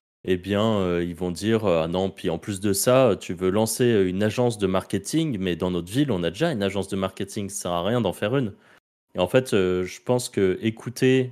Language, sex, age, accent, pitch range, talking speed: French, male, 20-39, French, 95-115 Hz, 255 wpm